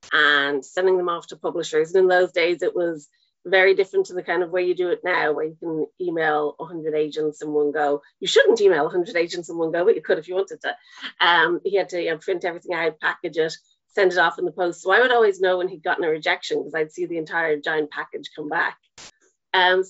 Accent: Irish